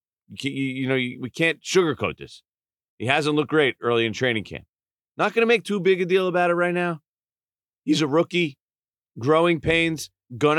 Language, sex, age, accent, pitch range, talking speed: English, male, 40-59, American, 100-145 Hz, 180 wpm